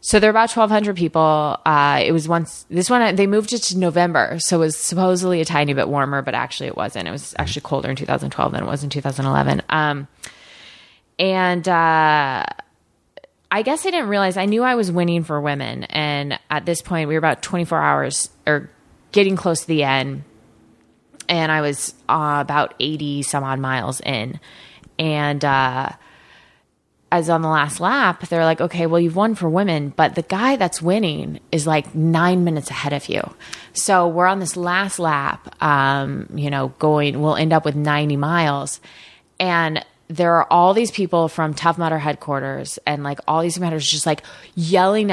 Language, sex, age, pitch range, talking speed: English, female, 20-39, 150-185 Hz, 185 wpm